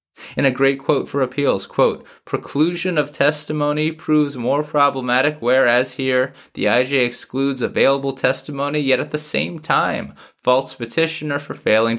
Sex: male